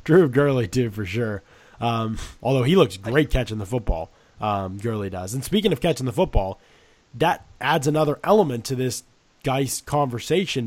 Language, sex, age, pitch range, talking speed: English, male, 20-39, 115-160 Hz, 170 wpm